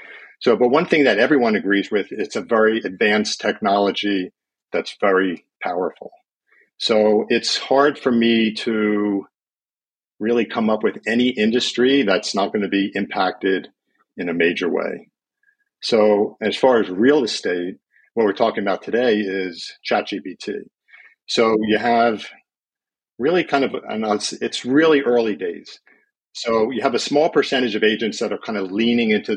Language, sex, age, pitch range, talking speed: English, male, 50-69, 105-125 Hz, 155 wpm